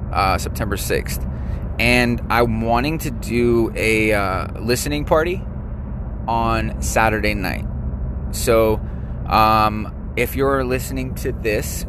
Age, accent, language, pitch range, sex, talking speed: 20-39, American, English, 95-115 Hz, male, 110 wpm